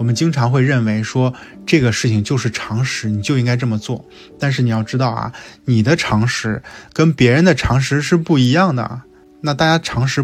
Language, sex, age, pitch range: Chinese, male, 20-39, 115-140 Hz